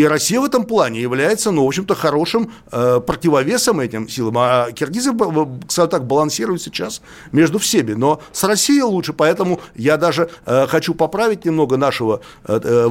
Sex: male